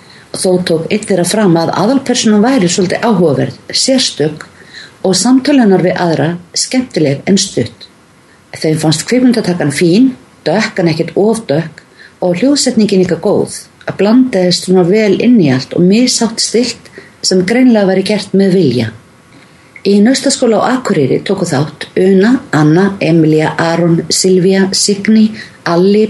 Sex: female